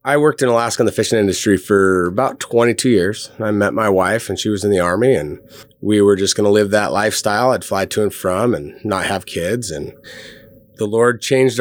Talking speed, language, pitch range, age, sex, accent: 225 wpm, English, 90-115 Hz, 30-49, male, American